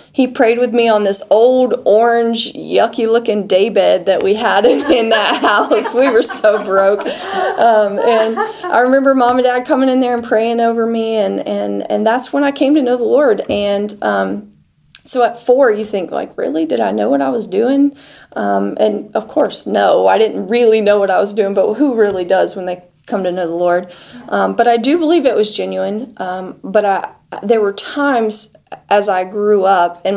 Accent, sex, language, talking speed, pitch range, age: American, female, English, 205 wpm, 185-235 Hz, 30-49